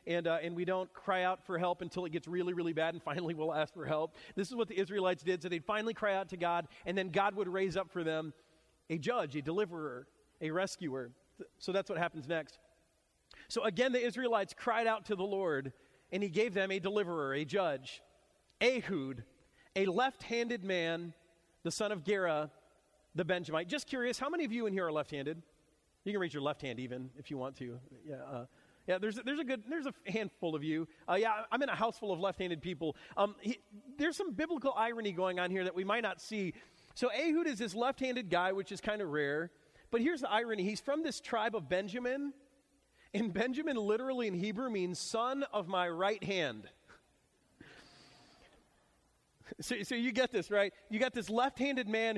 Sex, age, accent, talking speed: male, 40-59, American, 210 wpm